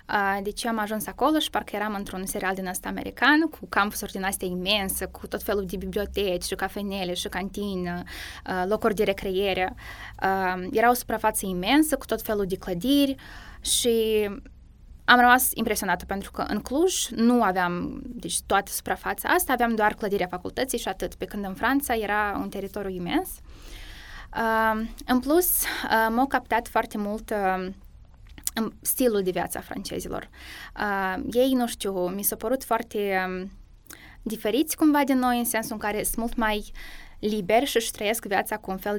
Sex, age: female, 10-29